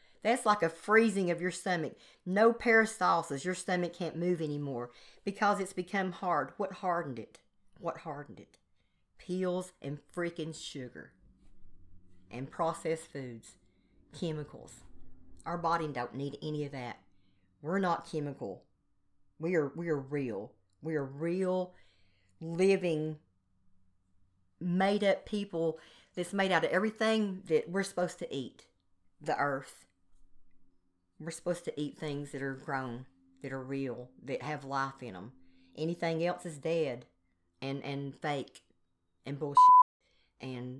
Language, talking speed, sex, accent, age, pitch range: English, 135 wpm, female, American, 40-59, 120-180 Hz